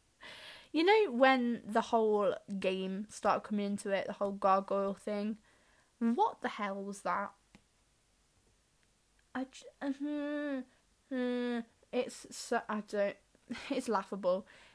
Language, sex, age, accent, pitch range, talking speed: English, female, 10-29, British, 205-245 Hz, 120 wpm